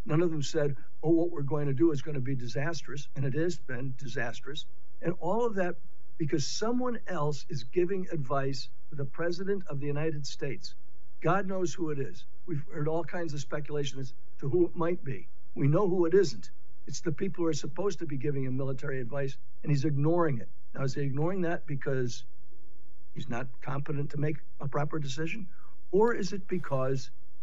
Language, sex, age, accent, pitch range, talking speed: English, male, 60-79, American, 135-170 Hz, 205 wpm